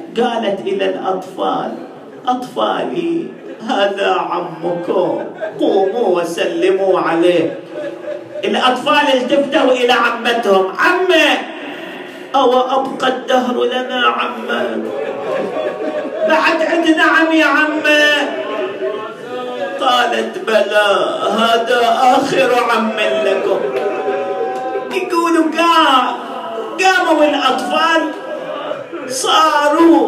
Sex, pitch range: male, 235-310 Hz